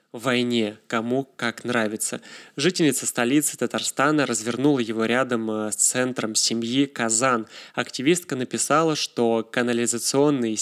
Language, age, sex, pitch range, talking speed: Russian, 20-39, male, 115-145 Hz, 100 wpm